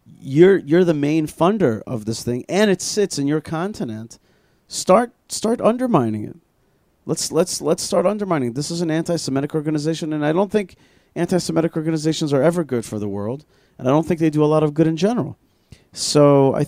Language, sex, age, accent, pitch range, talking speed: English, male, 30-49, American, 120-165 Hz, 200 wpm